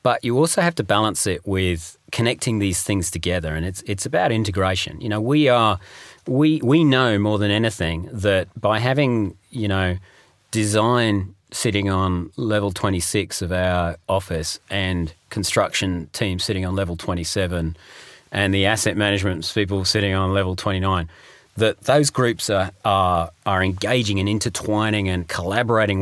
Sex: male